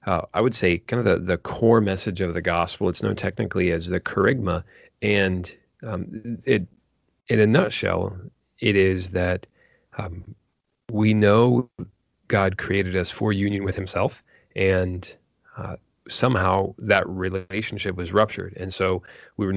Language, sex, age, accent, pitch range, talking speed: English, male, 30-49, American, 90-105 Hz, 150 wpm